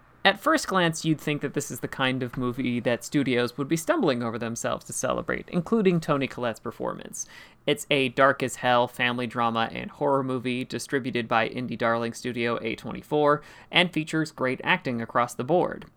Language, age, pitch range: English, 30-49, 120-160 Hz